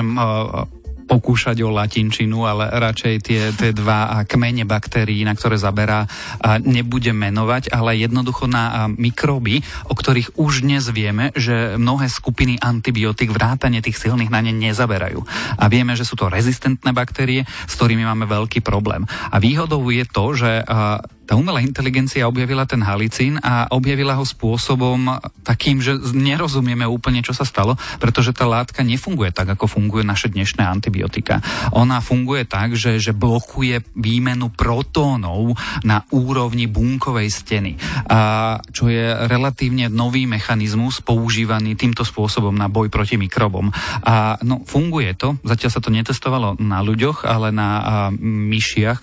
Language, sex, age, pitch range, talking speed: Slovak, male, 30-49, 110-125 Hz, 140 wpm